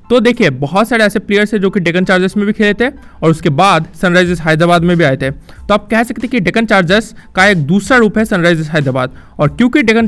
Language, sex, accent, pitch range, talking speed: Hindi, male, native, 175-225 Hz, 250 wpm